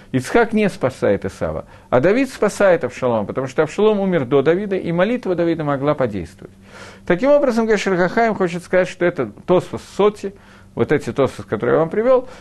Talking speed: 175 wpm